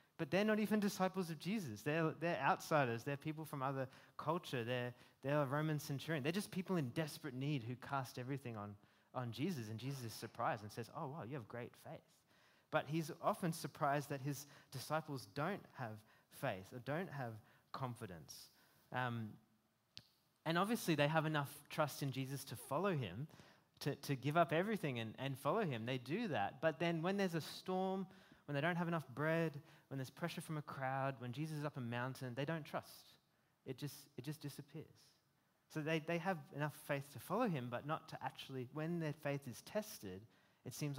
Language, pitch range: English, 125-160 Hz